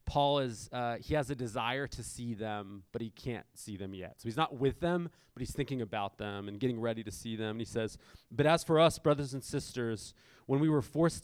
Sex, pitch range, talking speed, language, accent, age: male, 110-135 Hz, 245 wpm, English, American, 30-49